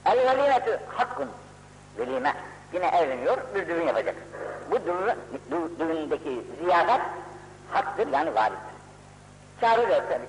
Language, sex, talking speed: Turkish, female, 110 wpm